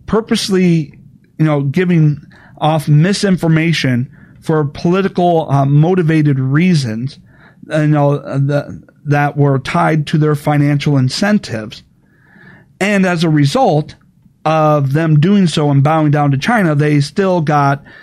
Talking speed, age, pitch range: 130 wpm, 40-59, 140-170 Hz